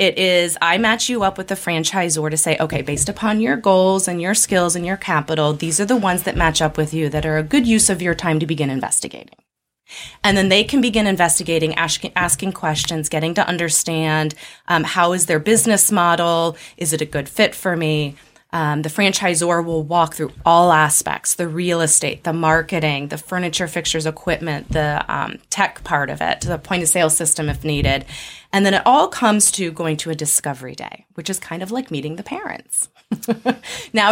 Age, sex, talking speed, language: 20-39, female, 200 wpm, English